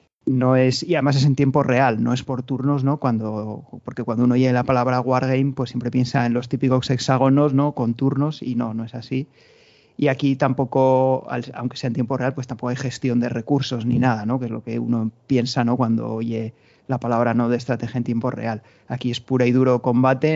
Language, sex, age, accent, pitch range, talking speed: Spanish, male, 30-49, Spanish, 120-140 Hz, 225 wpm